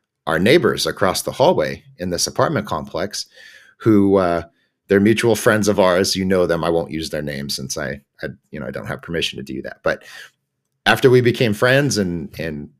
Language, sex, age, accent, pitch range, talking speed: English, male, 30-49, American, 95-130 Hz, 200 wpm